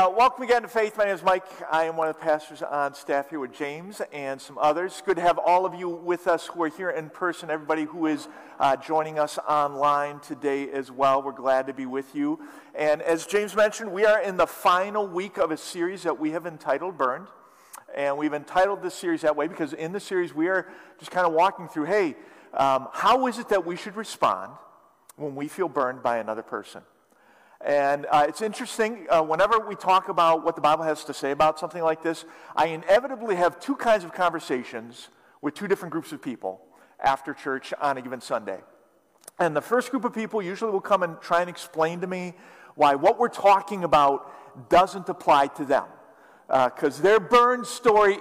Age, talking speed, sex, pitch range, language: 50-69, 215 wpm, male, 150-200 Hz, English